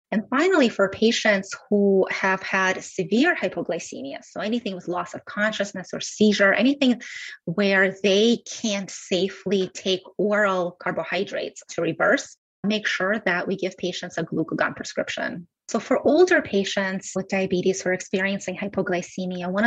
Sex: female